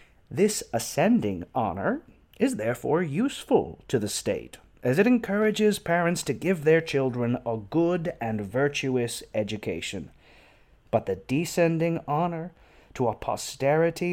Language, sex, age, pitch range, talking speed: English, male, 30-49, 115-170 Hz, 125 wpm